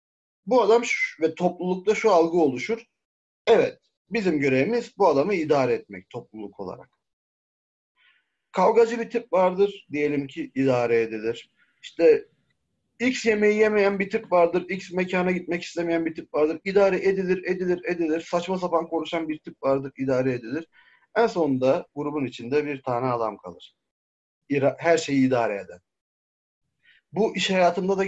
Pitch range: 135-190 Hz